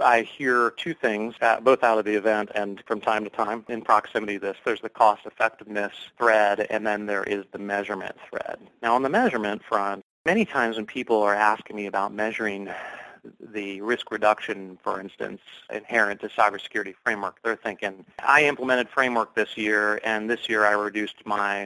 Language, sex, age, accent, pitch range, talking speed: English, male, 30-49, American, 100-115 Hz, 185 wpm